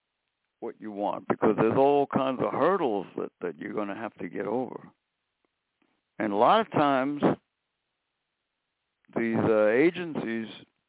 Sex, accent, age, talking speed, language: male, American, 60-79, 145 wpm, English